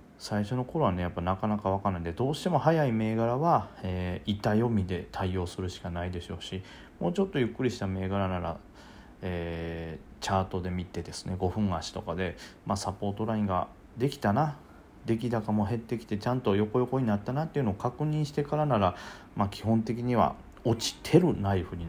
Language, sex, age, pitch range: Japanese, male, 40-59, 95-115 Hz